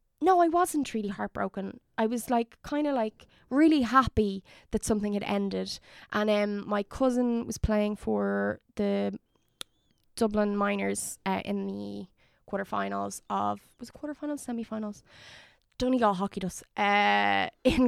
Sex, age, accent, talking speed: female, 20-39, Irish, 135 wpm